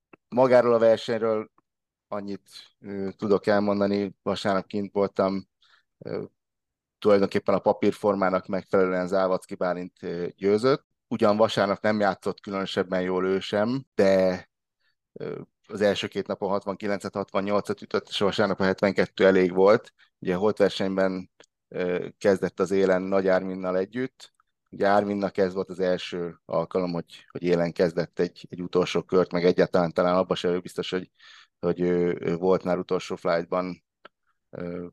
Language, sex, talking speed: Hungarian, male, 135 wpm